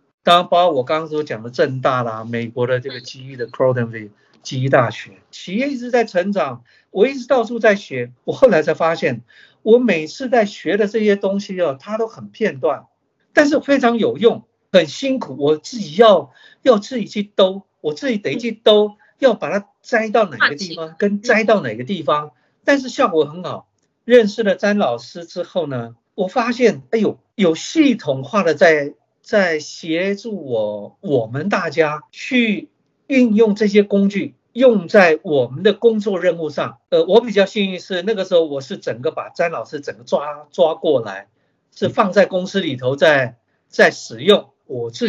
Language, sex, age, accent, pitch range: Chinese, male, 50-69, native, 150-230 Hz